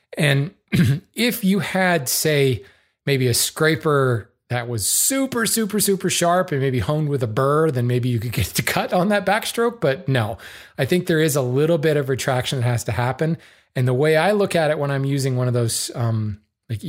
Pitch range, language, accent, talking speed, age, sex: 120-155 Hz, English, American, 215 wpm, 30-49, male